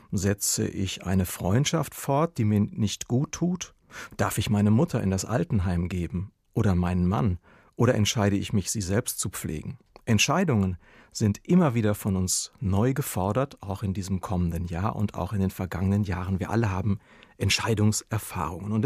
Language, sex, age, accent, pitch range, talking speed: German, male, 40-59, German, 95-125 Hz, 170 wpm